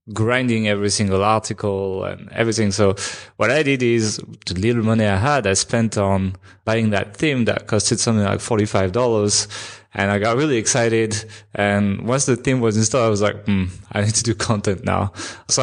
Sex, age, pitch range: male, 20-39, 100-120 Hz